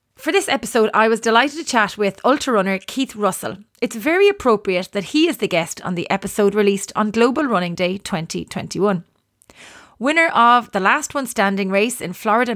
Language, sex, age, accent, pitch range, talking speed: English, female, 30-49, Irish, 195-245 Hz, 185 wpm